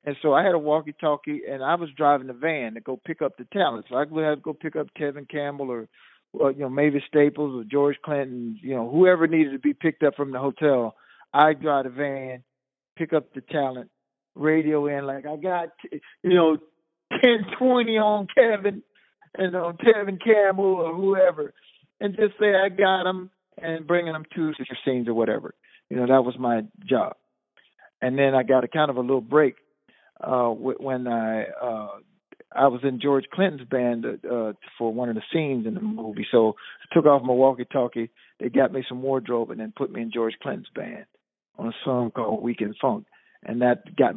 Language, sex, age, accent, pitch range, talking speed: English, male, 50-69, American, 125-160 Hz, 200 wpm